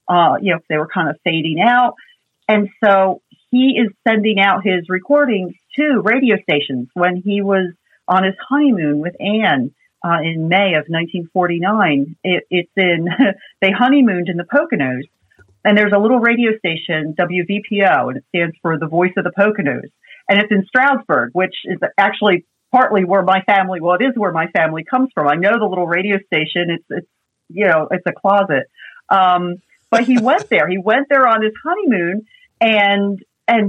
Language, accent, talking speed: English, American, 180 wpm